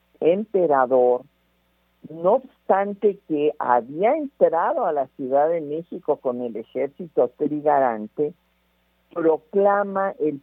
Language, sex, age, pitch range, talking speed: Spanish, male, 50-69, 130-190 Hz, 100 wpm